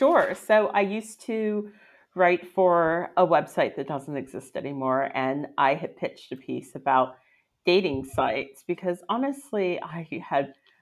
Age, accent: 40-59, American